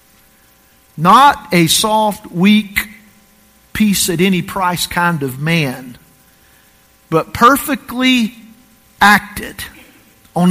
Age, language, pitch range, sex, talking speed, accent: 50-69, English, 180-255 Hz, male, 70 wpm, American